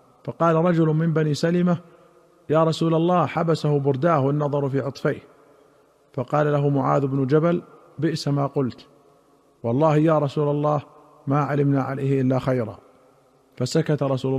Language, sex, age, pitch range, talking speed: Arabic, male, 40-59, 135-155 Hz, 135 wpm